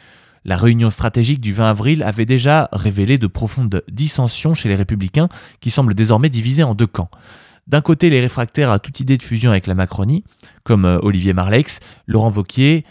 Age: 20-39